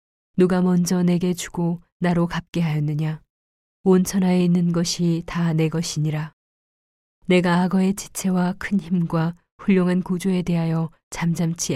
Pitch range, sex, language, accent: 165-185 Hz, female, Korean, native